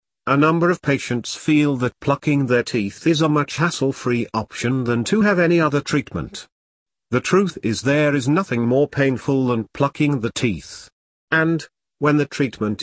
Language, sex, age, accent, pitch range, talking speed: English, male, 50-69, British, 110-145 Hz, 170 wpm